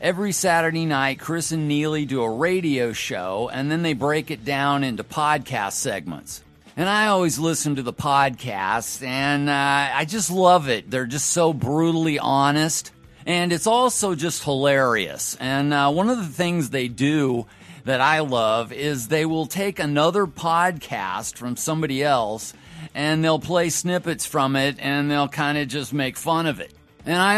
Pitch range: 135-170 Hz